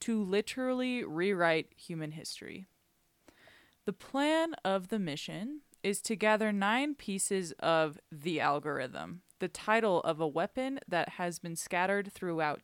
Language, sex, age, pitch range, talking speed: English, female, 20-39, 165-210 Hz, 135 wpm